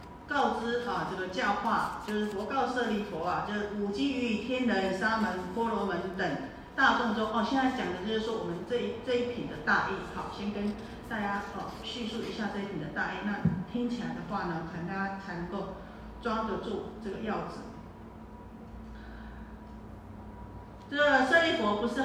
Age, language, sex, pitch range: 40-59, Chinese, female, 185-240 Hz